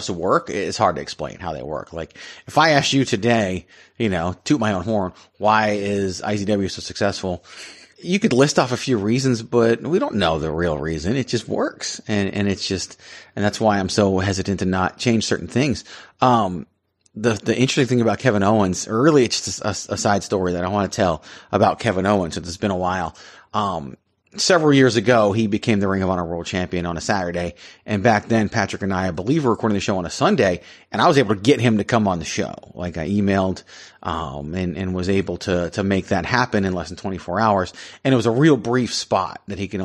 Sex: male